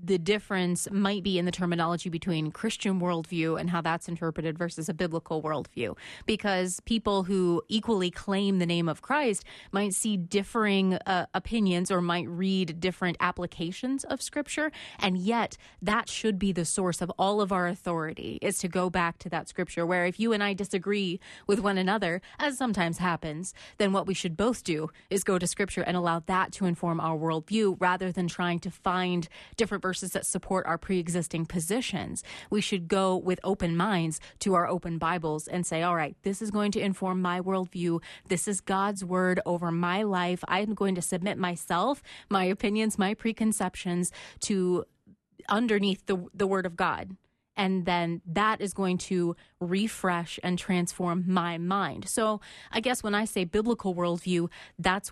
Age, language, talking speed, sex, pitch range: 30-49, English, 175 wpm, female, 175-200 Hz